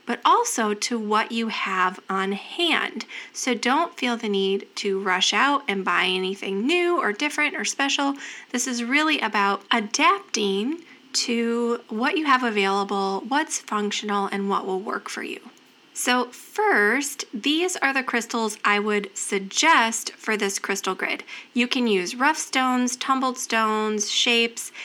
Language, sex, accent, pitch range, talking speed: English, female, American, 210-290 Hz, 150 wpm